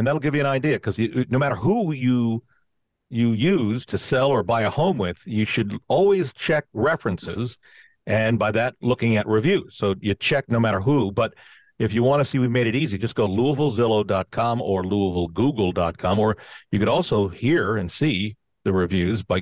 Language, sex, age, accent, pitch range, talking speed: English, male, 50-69, American, 105-140 Hz, 195 wpm